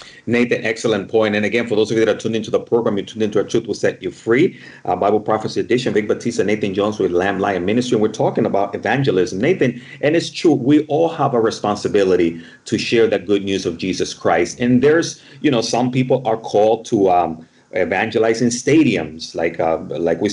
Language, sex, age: English, male, 30-49